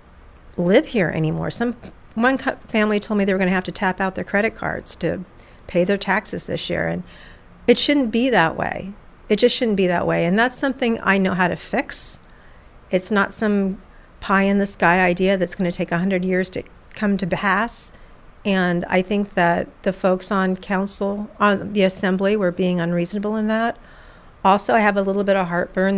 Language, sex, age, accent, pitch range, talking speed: English, female, 50-69, American, 185-210 Hz, 195 wpm